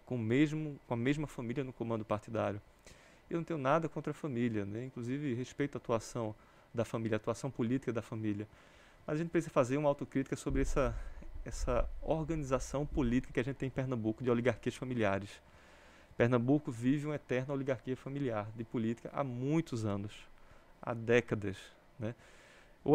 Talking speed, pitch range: 165 wpm, 115-145 Hz